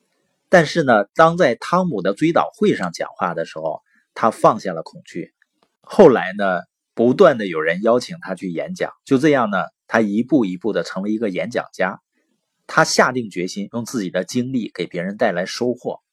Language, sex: Chinese, male